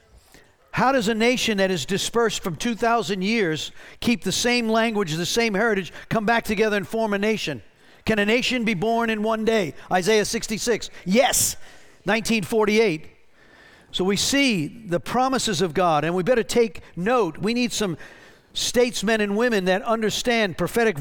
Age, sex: 50-69, male